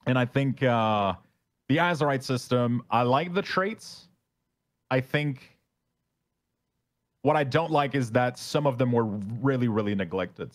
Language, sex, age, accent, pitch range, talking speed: English, male, 30-49, American, 105-135 Hz, 150 wpm